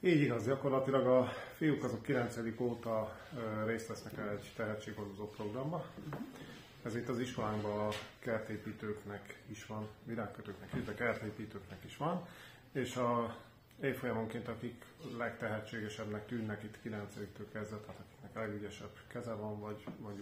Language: Hungarian